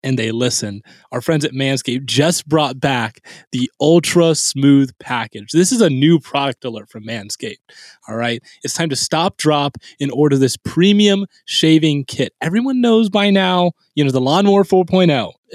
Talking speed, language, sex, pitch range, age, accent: 170 wpm, English, male, 130-190 Hz, 20-39, American